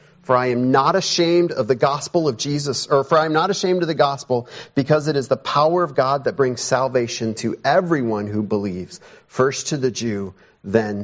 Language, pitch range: English, 120-185 Hz